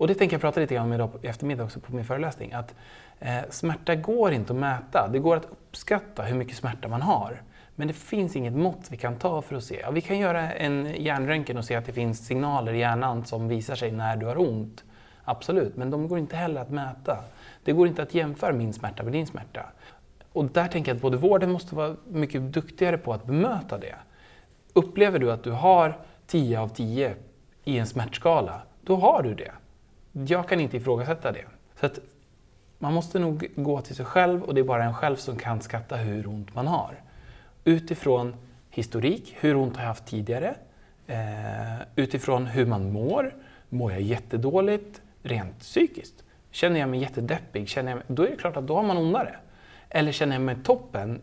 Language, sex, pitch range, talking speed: Swedish, male, 120-160 Hz, 205 wpm